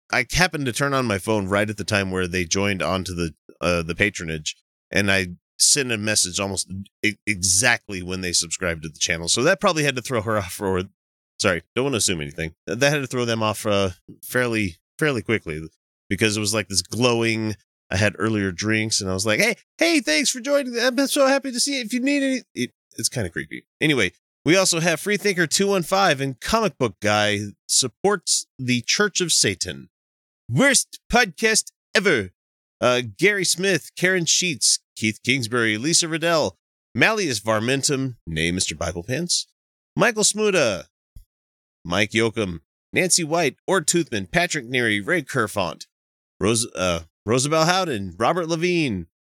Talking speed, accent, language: 175 wpm, American, English